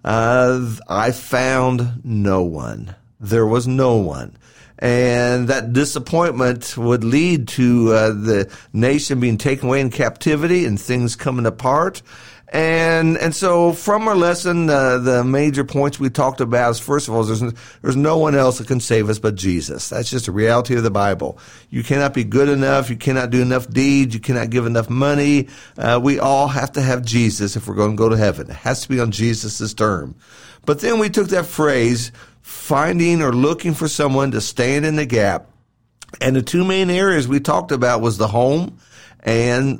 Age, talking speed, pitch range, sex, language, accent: 50-69, 190 wpm, 115-145 Hz, male, English, American